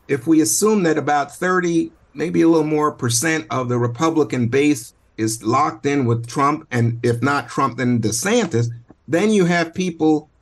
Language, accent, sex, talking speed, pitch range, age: English, American, male, 175 wpm, 120-155 Hz, 50-69